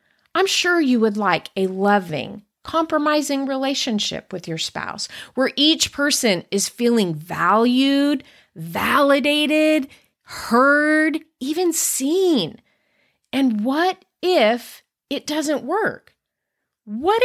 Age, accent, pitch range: 30-49, American, 205-310 Hz